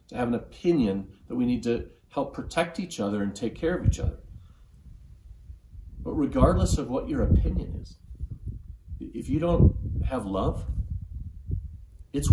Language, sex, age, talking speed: English, male, 40-59, 150 wpm